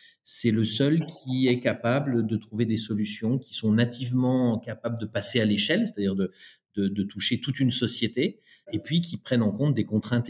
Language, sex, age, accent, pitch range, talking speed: French, male, 40-59, French, 100-130 Hz, 200 wpm